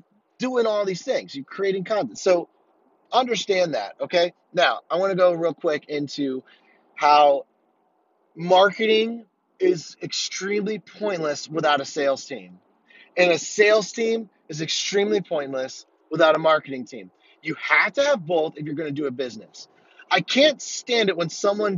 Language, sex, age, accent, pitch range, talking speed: English, male, 30-49, American, 165-235 Hz, 155 wpm